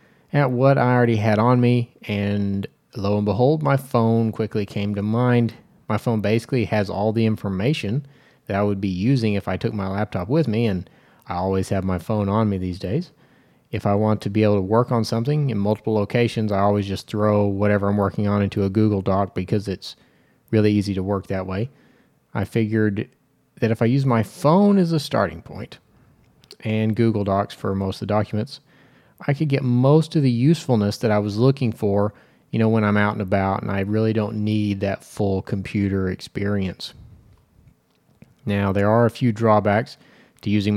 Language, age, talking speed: English, 30-49, 200 wpm